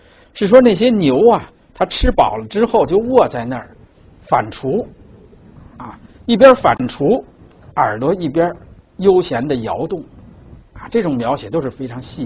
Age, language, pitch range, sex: 60-79, Chinese, 105-175 Hz, male